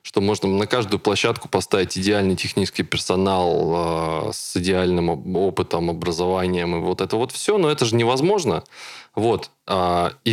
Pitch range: 95-115 Hz